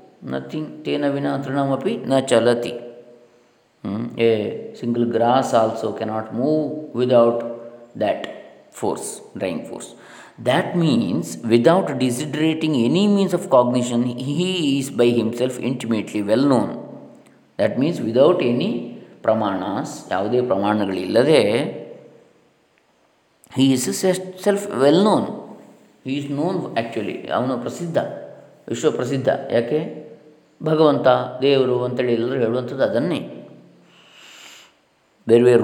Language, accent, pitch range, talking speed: English, Indian, 115-150 Hz, 85 wpm